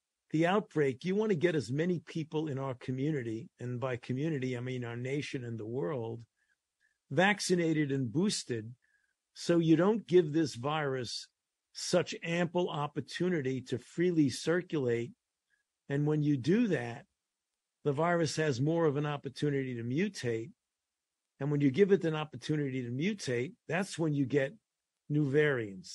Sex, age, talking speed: male, 50-69, 155 wpm